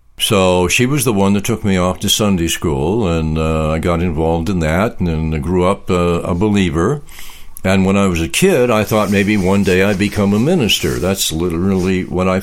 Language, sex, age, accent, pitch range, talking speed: English, male, 60-79, American, 85-100 Hz, 215 wpm